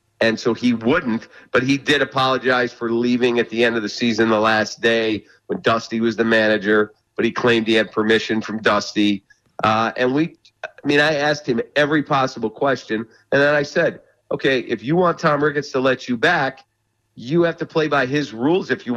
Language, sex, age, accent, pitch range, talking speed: English, male, 50-69, American, 115-155 Hz, 210 wpm